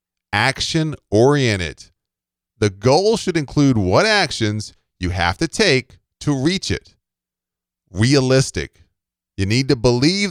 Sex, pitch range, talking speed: male, 95-145 Hz, 110 wpm